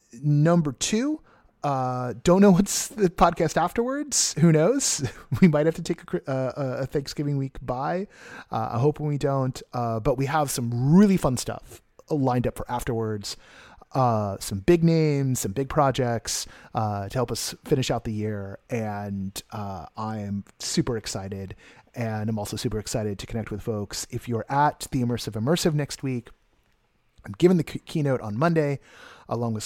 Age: 30-49